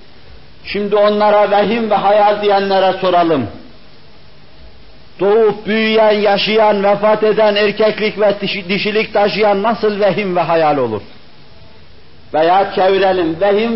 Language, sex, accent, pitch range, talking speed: Turkish, male, native, 190-225 Hz, 105 wpm